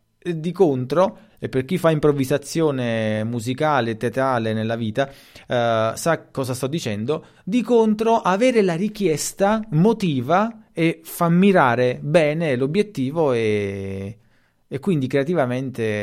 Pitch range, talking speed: 110-160 Hz, 120 wpm